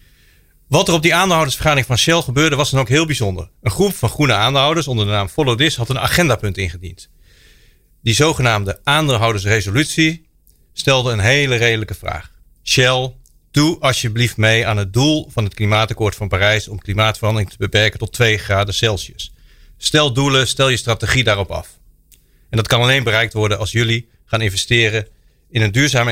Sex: male